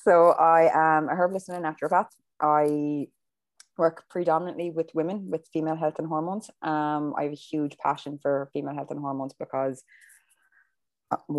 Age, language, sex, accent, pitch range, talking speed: 20-39, English, female, Irish, 140-160 Hz, 165 wpm